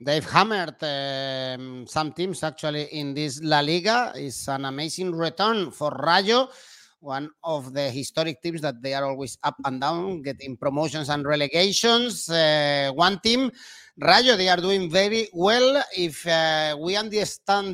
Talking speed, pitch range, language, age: 150 wpm, 155-195 Hz, English, 30-49